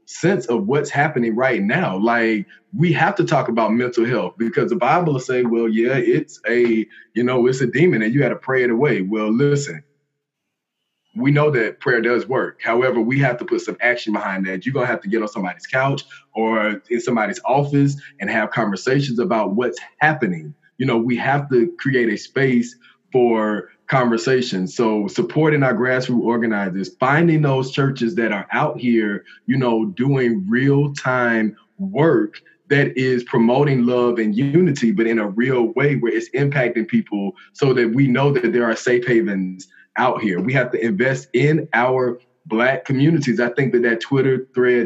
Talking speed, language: 185 wpm, English